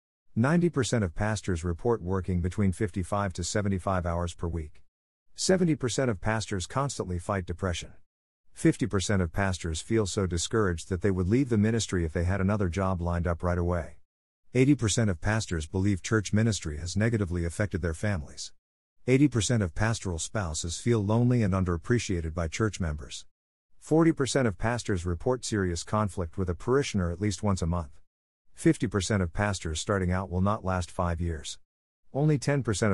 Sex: male